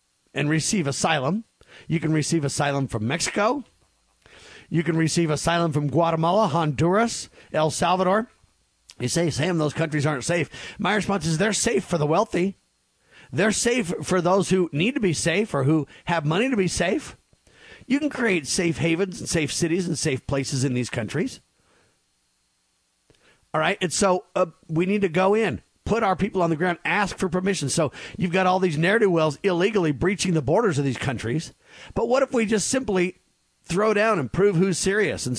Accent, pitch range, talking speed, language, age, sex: American, 150-195 Hz, 185 wpm, English, 40-59, male